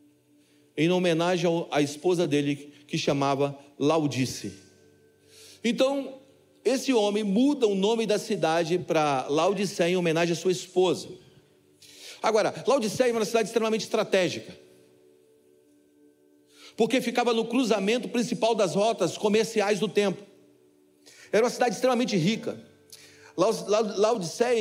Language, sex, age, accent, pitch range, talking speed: Portuguese, male, 40-59, Brazilian, 145-210 Hz, 110 wpm